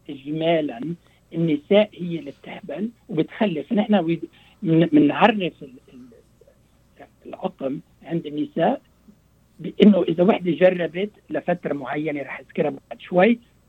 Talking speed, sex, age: 90 wpm, male, 60-79